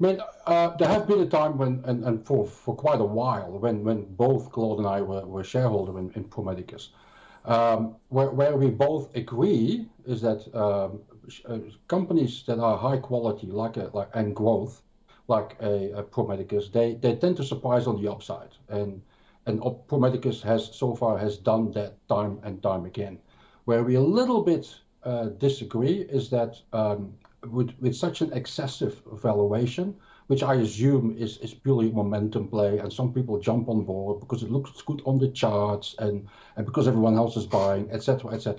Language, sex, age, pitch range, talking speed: English, male, 50-69, 105-130 Hz, 185 wpm